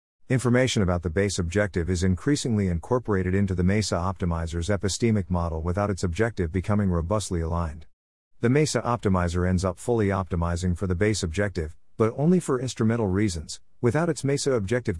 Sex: male